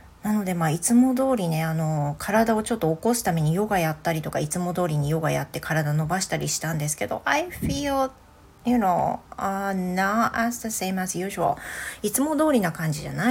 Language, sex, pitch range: Japanese, female, 155-220 Hz